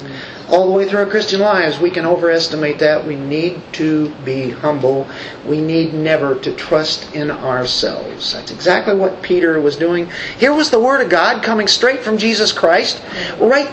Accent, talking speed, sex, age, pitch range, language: American, 180 wpm, male, 40-59, 155-235 Hz, English